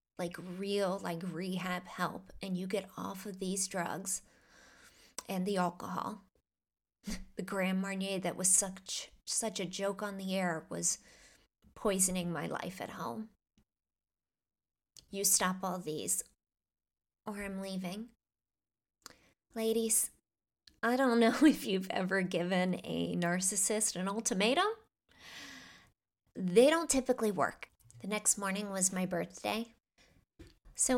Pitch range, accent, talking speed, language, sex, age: 180-205 Hz, American, 120 wpm, English, female, 20-39